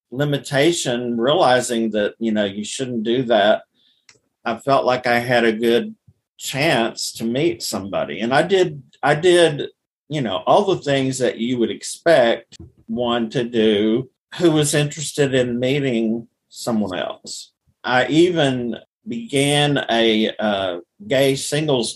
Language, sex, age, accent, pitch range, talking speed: English, male, 50-69, American, 115-145 Hz, 140 wpm